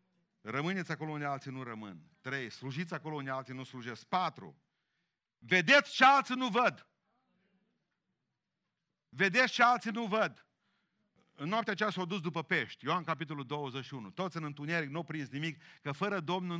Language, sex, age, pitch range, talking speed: Romanian, male, 50-69, 150-210 Hz, 155 wpm